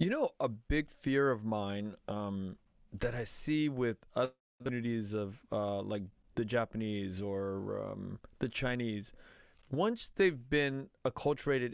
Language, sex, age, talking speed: English, male, 30-49, 135 wpm